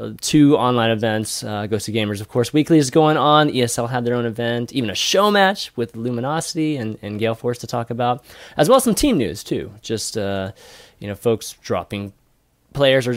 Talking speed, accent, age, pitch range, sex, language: 210 wpm, American, 20-39, 110-150 Hz, male, English